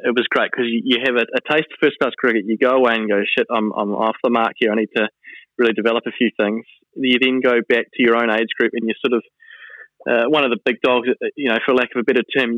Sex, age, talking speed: male, 20-39, 285 wpm